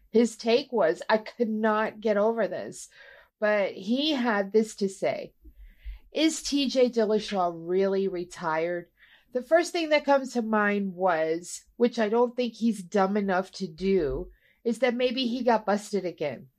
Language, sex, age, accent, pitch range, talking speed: English, female, 50-69, American, 200-250 Hz, 160 wpm